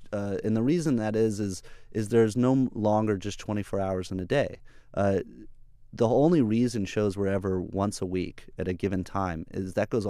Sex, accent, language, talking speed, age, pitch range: male, American, English, 200 wpm, 30-49, 95-115 Hz